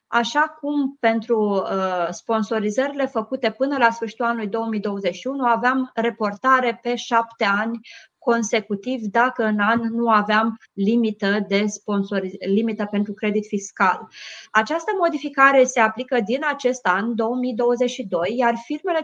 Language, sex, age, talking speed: Romanian, female, 20-39, 115 wpm